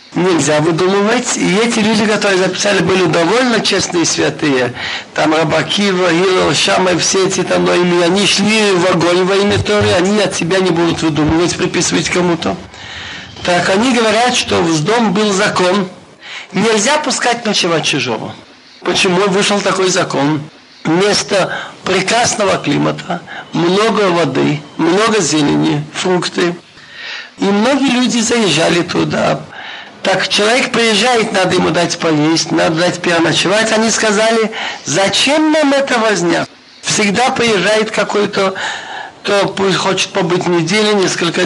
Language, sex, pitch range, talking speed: Russian, male, 175-225 Hz, 125 wpm